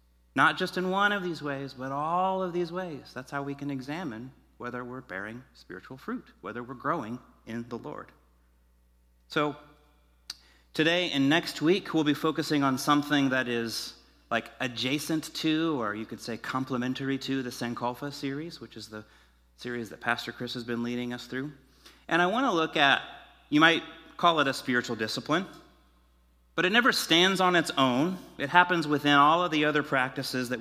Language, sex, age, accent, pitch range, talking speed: English, male, 30-49, American, 105-145 Hz, 180 wpm